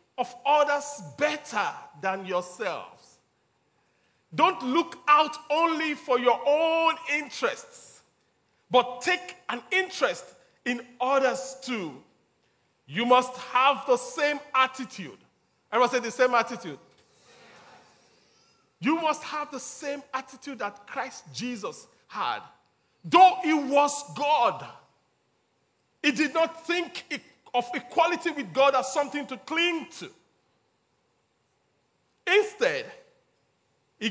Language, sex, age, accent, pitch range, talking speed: English, male, 40-59, Nigerian, 250-325 Hz, 105 wpm